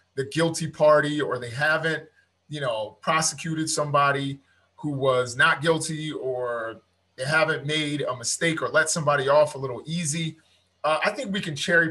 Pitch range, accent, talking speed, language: 130-160 Hz, American, 165 wpm, English